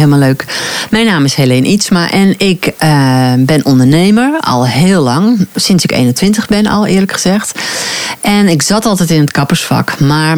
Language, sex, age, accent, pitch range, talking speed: Dutch, female, 40-59, Dutch, 150-190 Hz, 175 wpm